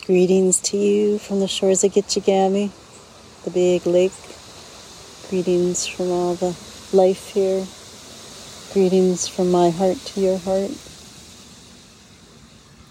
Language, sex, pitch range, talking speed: English, female, 175-190 Hz, 110 wpm